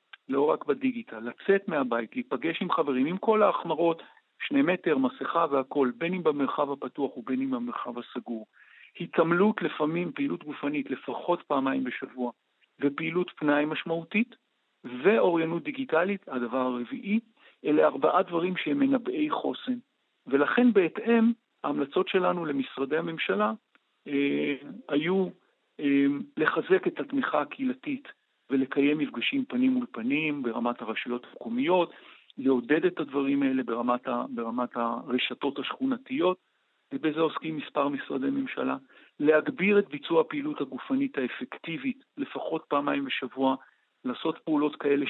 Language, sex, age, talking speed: Hebrew, male, 50-69, 115 wpm